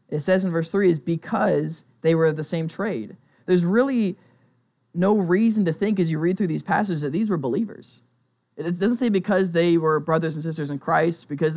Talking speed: 215 wpm